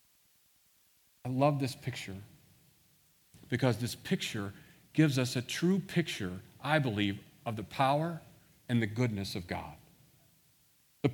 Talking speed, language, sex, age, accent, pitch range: 125 wpm, English, male, 40-59, American, 110-150 Hz